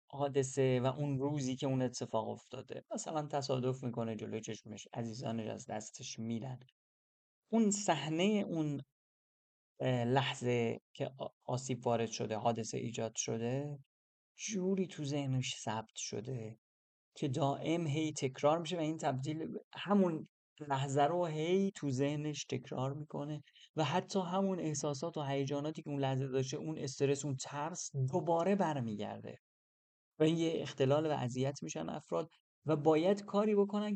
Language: Persian